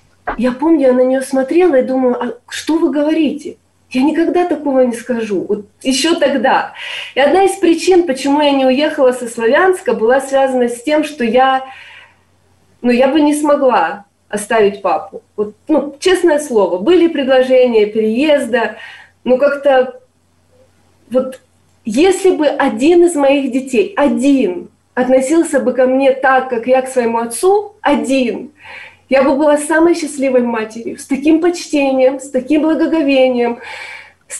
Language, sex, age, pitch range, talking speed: Ukrainian, female, 20-39, 250-310 Hz, 145 wpm